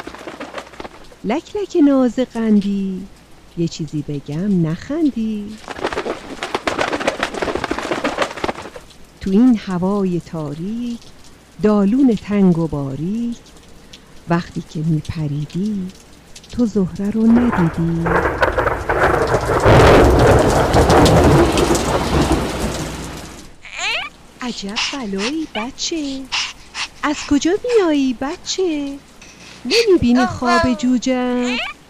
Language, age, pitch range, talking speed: Persian, 50-69, 170-245 Hz, 65 wpm